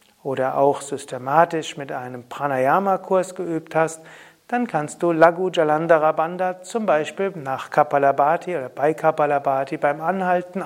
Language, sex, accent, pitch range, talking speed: German, male, German, 145-190 Hz, 130 wpm